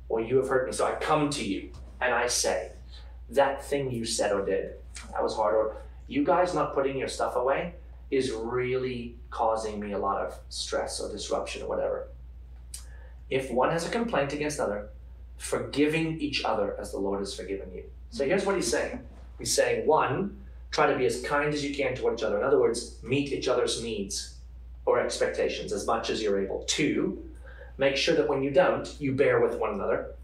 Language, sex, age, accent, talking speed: English, male, 30-49, American, 205 wpm